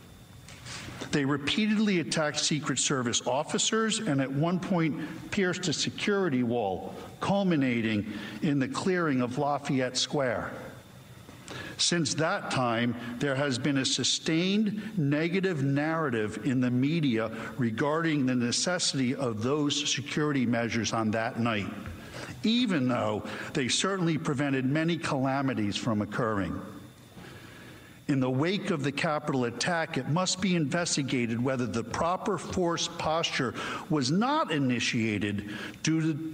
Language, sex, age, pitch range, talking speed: English, male, 50-69, 125-160 Hz, 120 wpm